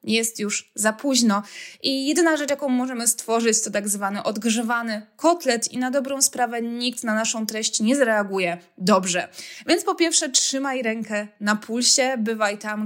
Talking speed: 165 wpm